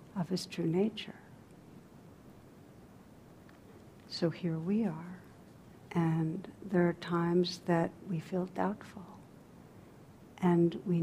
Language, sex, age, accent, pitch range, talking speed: English, female, 60-79, American, 170-195 Hz, 100 wpm